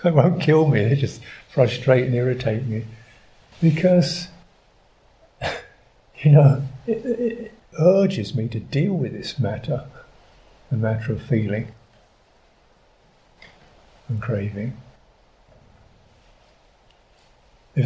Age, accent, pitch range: 50-69, British, 115-150 Hz